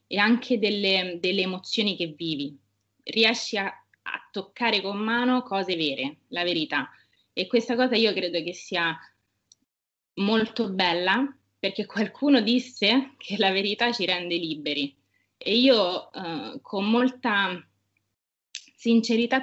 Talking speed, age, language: 125 wpm, 20-39, Italian